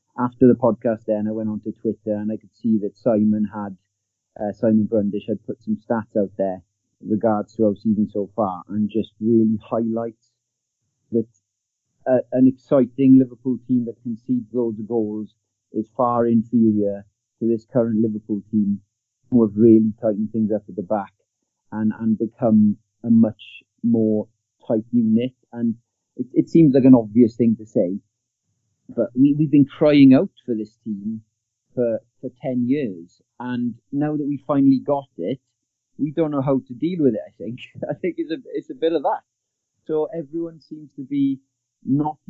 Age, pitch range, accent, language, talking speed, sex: 40-59, 110-135 Hz, British, English, 175 wpm, male